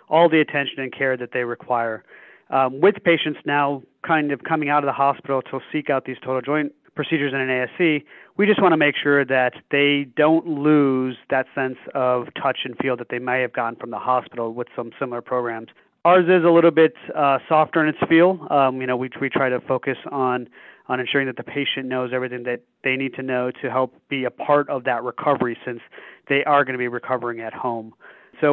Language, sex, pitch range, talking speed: English, male, 125-150 Hz, 225 wpm